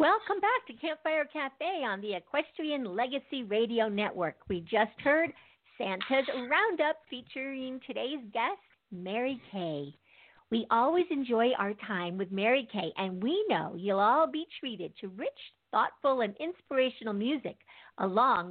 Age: 50-69